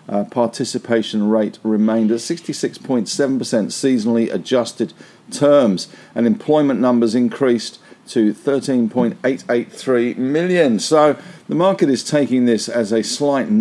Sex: male